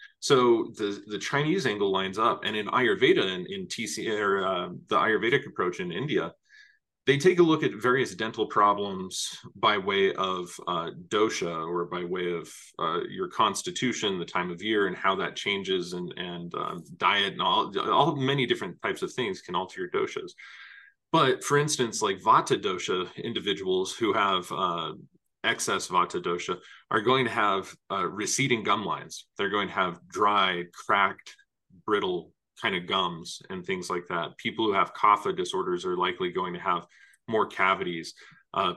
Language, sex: English, male